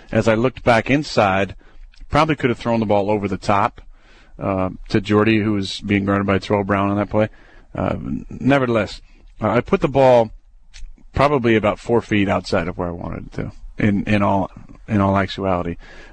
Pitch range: 100-120 Hz